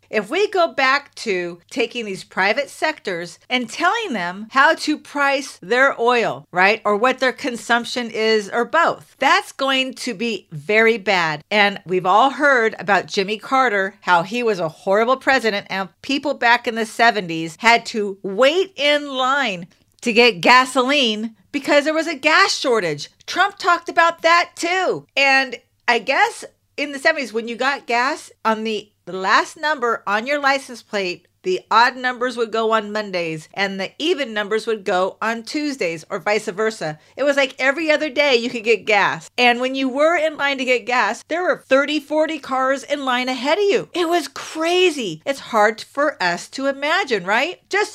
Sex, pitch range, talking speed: female, 215-290 Hz, 185 wpm